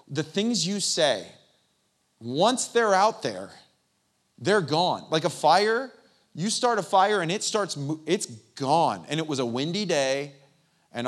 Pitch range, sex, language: 125-155 Hz, male, English